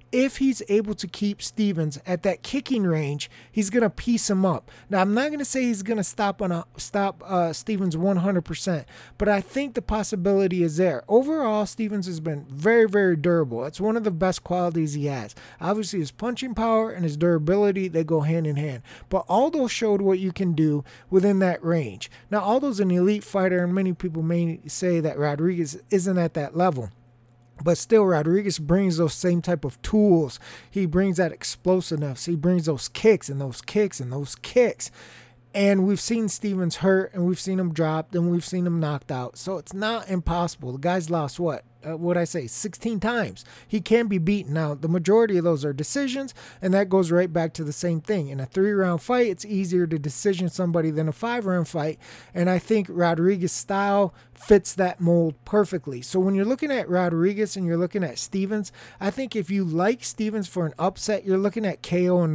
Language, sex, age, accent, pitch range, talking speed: English, male, 30-49, American, 160-205 Hz, 205 wpm